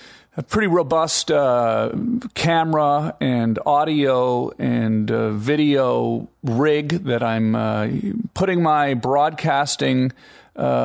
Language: English